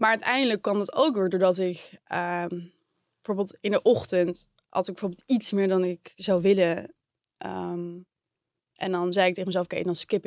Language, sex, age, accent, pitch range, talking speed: Dutch, female, 20-39, Dutch, 175-205 Hz, 185 wpm